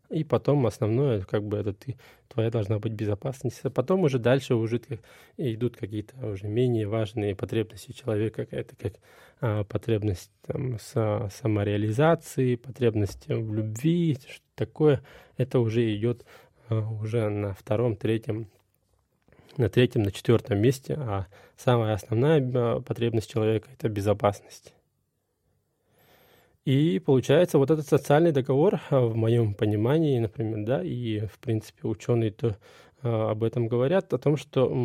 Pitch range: 110-130 Hz